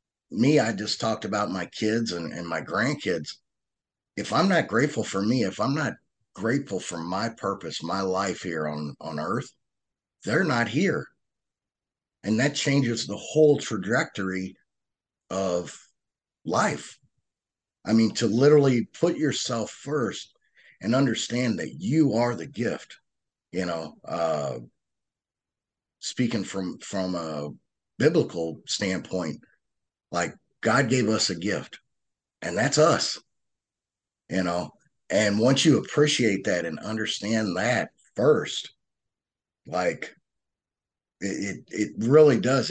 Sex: male